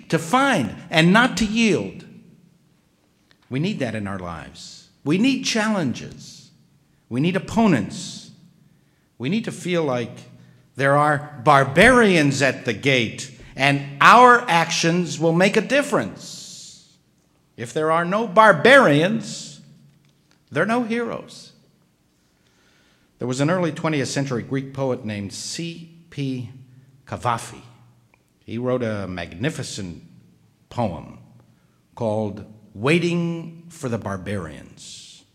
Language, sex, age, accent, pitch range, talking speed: English, male, 60-79, American, 120-175 Hz, 110 wpm